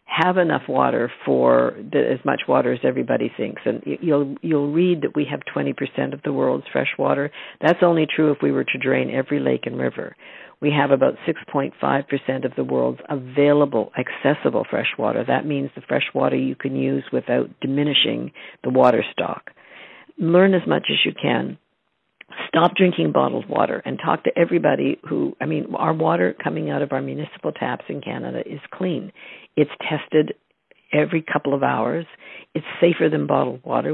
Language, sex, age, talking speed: English, female, 60-79, 175 wpm